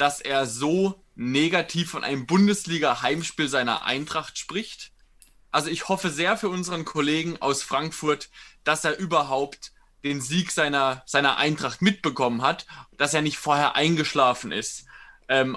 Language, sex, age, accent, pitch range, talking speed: German, male, 20-39, German, 130-155 Hz, 140 wpm